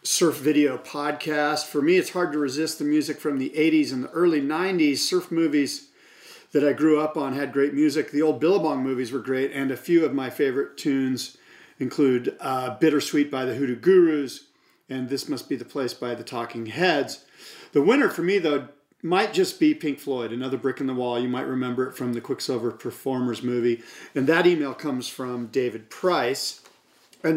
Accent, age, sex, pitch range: American, 40-59, male, 135-165 Hz